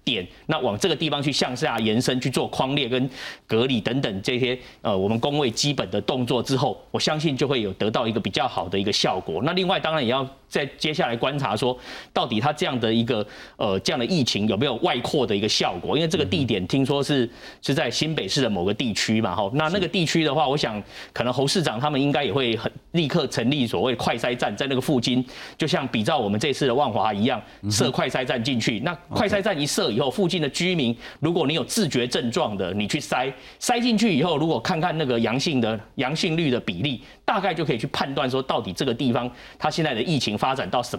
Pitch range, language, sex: 120-165 Hz, Chinese, male